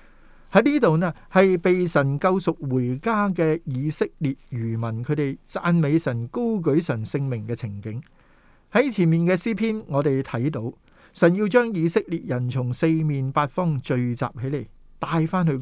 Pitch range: 130-180 Hz